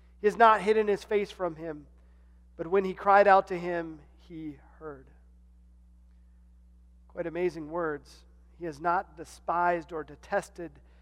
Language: English